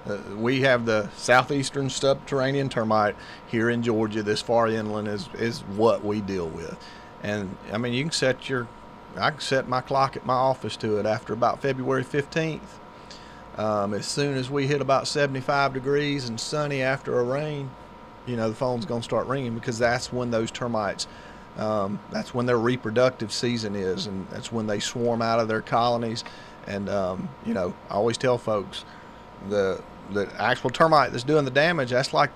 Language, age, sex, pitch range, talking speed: English, 40-59, male, 110-135 Hz, 195 wpm